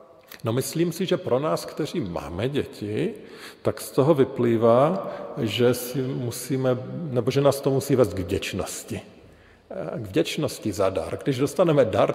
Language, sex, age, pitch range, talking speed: Slovak, male, 50-69, 100-130 Hz, 150 wpm